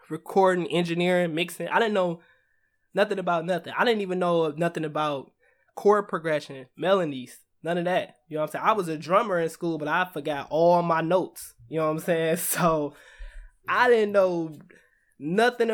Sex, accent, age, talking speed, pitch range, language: male, American, 20-39, 185 wpm, 140-180 Hz, English